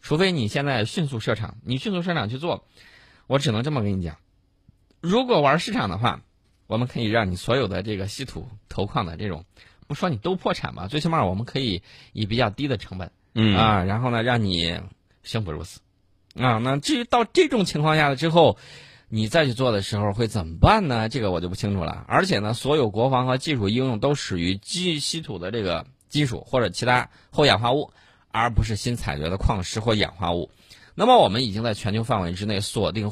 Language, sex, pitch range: Chinese, male, 95-130 Hz